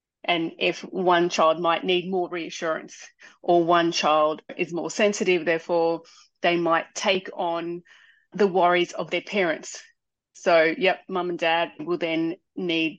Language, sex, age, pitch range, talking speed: English, female, 30-49, 170-210 Hz, 150 wpm